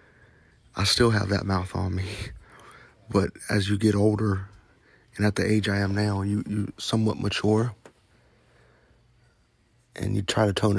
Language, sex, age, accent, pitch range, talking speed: English, male, 30-49, American, 100-110 Hz, 155 wpm